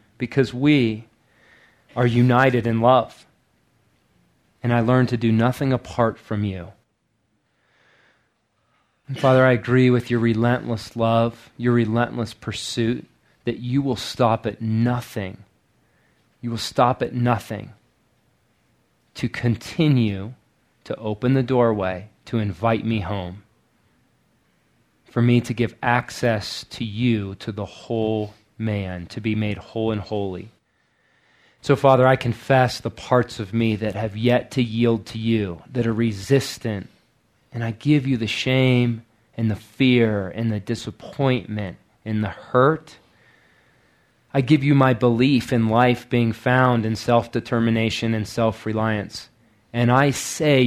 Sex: male